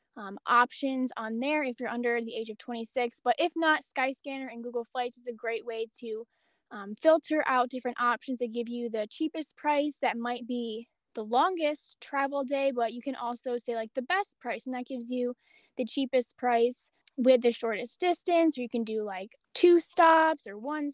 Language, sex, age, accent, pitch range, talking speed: English, female, 10-29, American, 235-275 Hz, 200 wpm